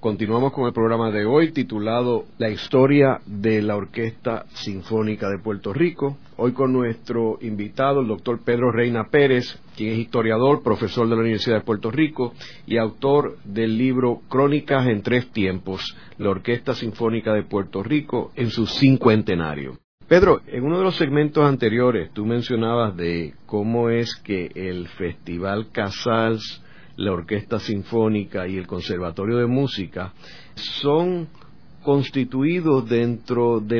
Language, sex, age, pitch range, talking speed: Spanish, male, 50-69, 105-130 Hz, 140 wpm